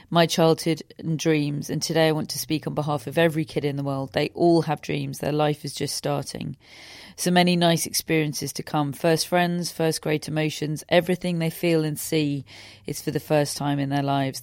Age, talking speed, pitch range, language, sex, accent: 40-59, 210 wpm, 145-165 Hz, English, female, British